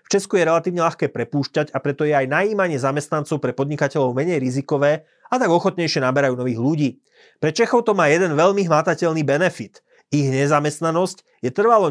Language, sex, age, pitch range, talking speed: Slovak, male, 30-49, 135-170 Hz, 170 wpm